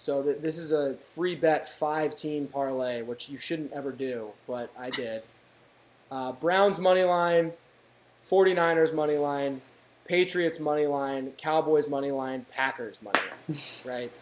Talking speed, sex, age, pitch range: 140 wpm, male, 20-39, 130-160 Hz